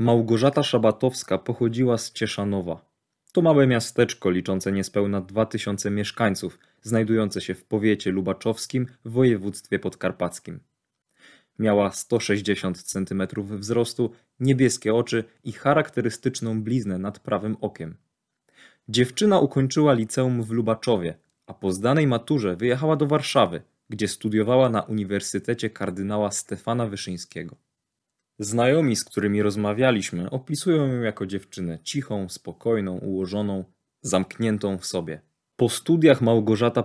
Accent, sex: native, male